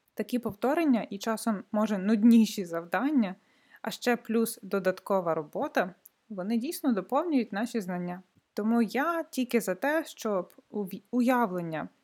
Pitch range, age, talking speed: 195-245 Hz, 20-39, 120 wpm